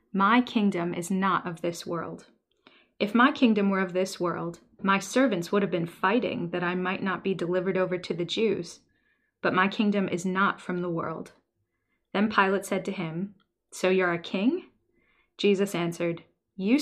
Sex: female